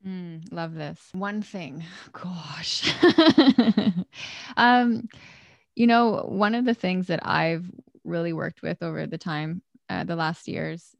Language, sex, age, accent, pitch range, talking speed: English, female, 20-39, American, 165-205 Hz, 135 wpm